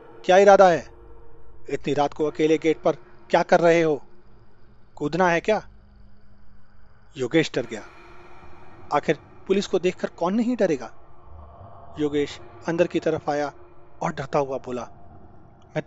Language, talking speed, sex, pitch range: Hindi, 135 wpm, male, 120-180 Hz